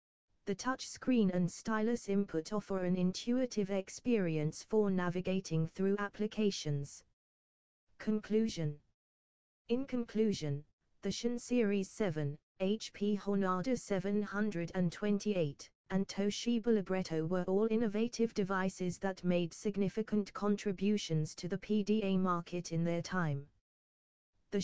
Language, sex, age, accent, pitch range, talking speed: English, female, 20-39, British, 175-215 Hz, 100 wpm